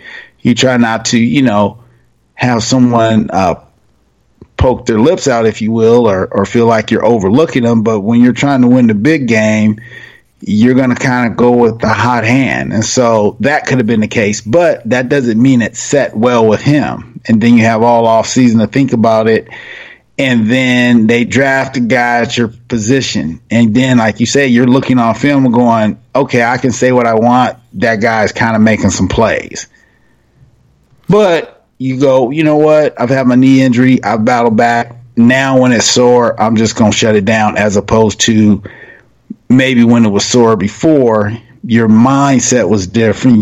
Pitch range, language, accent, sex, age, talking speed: 110-125 Hz, English, American, male, 30-49, 195 wpm